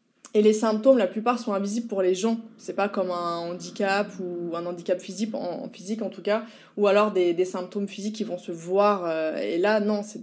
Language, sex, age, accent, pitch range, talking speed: French, female, 20-39, French, 195-235 Hz, 230 wpm